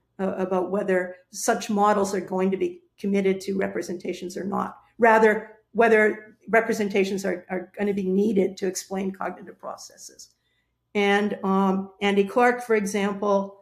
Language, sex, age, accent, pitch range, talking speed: English, female, 50-69, American, 190-215 Hz, 135 wpm